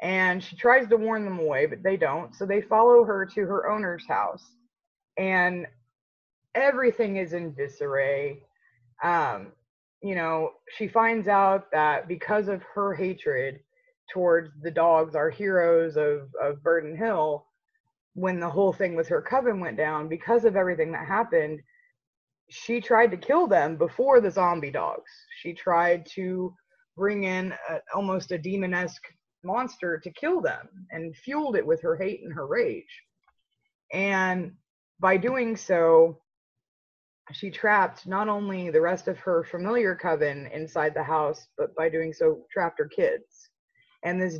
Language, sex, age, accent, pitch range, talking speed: English, female, 20-39, American, 170-235 Hz, 155 wpm